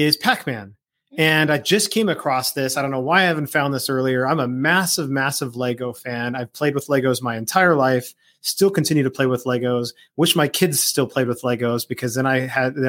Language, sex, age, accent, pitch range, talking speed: English, male, 30-49, American, 130-160 Hz, 225 wpm